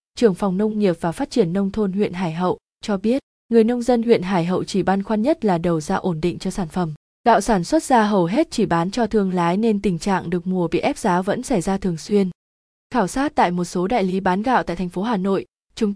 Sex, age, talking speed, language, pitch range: female, 20-39, 265 wpm, Vietnamese, 185-230 Hz